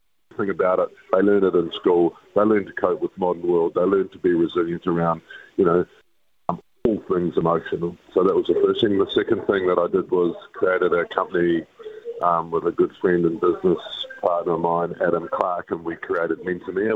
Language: English